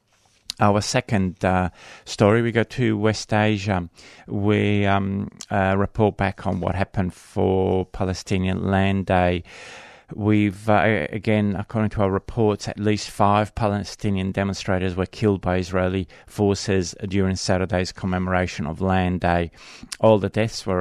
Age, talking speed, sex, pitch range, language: 30-49, 140 wpm, male, 95-105 Hz, English